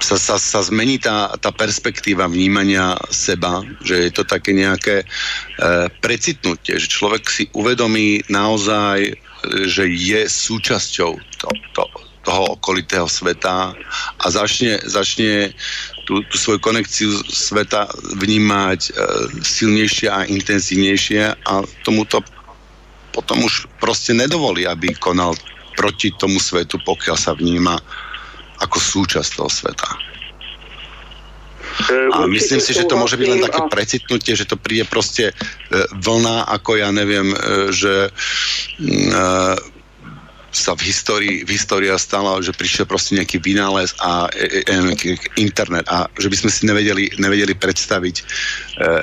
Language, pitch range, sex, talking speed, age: Slovak, 95-105 Hz, male, 115 wpm, 50-69